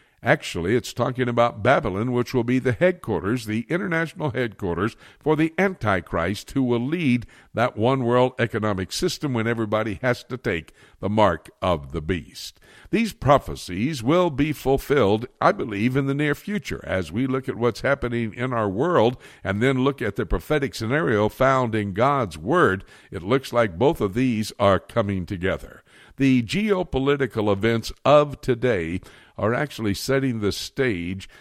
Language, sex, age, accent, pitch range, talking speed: English, male, 60-79, American, 105-135 Hz, 160 wpm